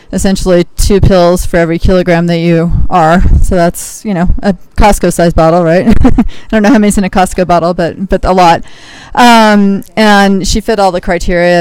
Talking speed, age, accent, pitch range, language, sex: 190 wpm, 30-49, American, 165-190 Hz, English, female